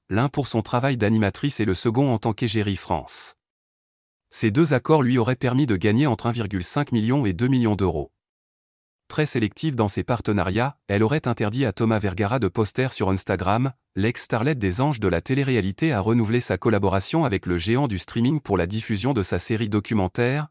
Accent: French